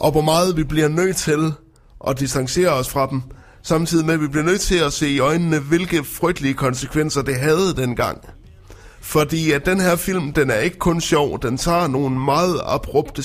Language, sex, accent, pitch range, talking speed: Danish, male, native, 125-160 Hz, 200 wpm